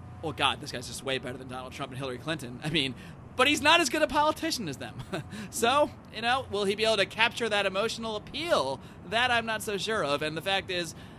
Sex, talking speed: male, 245 wpm